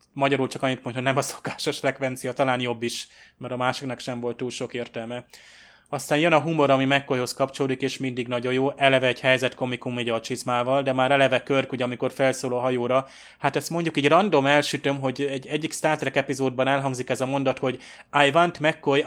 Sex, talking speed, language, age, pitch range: male, 210 wpm, Hungarian, 20-39, 125-140 Hz